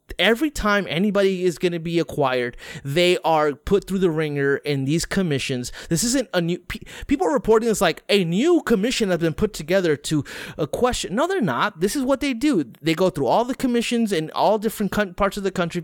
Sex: male